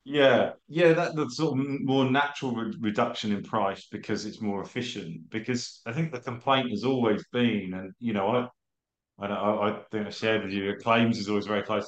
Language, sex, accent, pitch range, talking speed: English, male, British, 105-125 Hz, 205 wpm